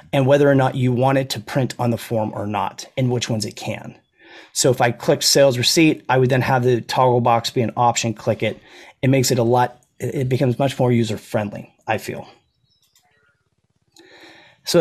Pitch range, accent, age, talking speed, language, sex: 125-150 Hz, American, 30-49, 205 wpm, English, male